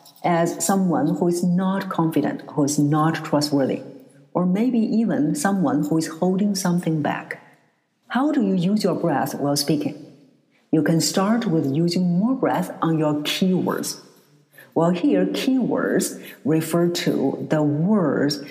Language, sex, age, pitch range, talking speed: English, female, 50-69, 145-190 Hz, 145 wpm